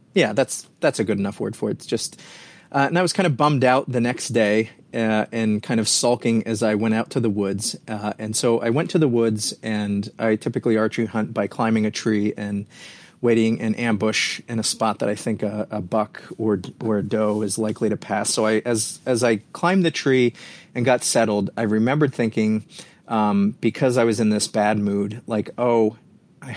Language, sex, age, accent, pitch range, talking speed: English, male, 30-49, American, 105-125 Hz, 220 wpm